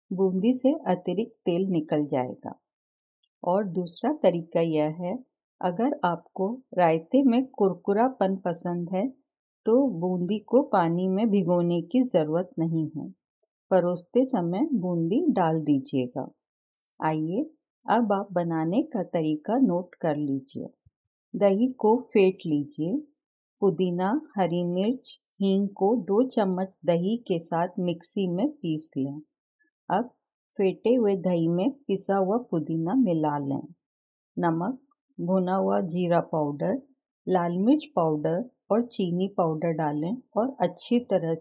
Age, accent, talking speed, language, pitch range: 50-69, native, 125 wpm, Hindi, 165-230 Hz